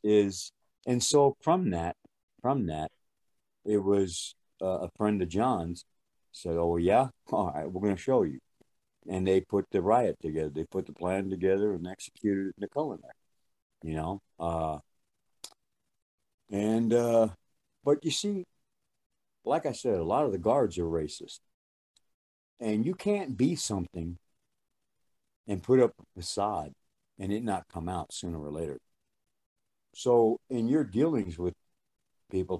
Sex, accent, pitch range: male, American, 85-120 Hz